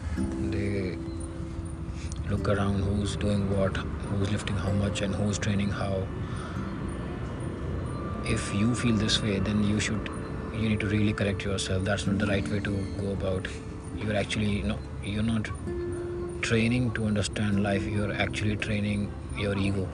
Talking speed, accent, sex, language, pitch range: 155 wpm, Indian, male, English, 95-105 Hz